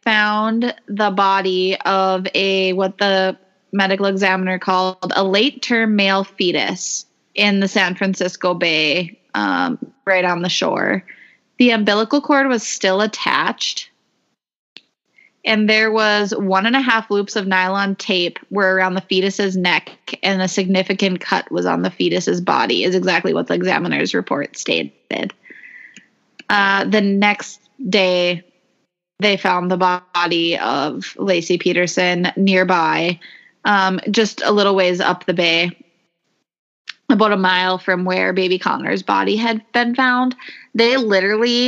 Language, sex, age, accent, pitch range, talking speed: English, female, 20-39, American, 185-220 Hz, 130 wpm